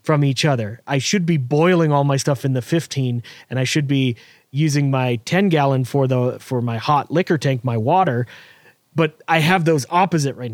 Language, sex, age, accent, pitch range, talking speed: English, male, 30-49, American, 130-160 Hz, 205 wpm